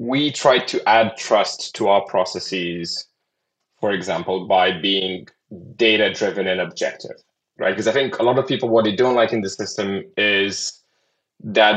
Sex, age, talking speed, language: male, 20-39, 165 wpm, English